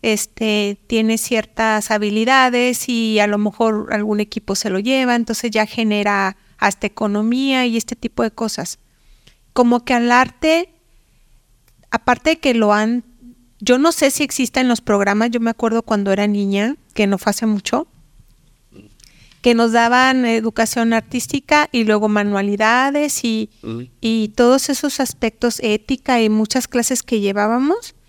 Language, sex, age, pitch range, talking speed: Spanish, female, 40-59, 210-245 Hz, 150 wpm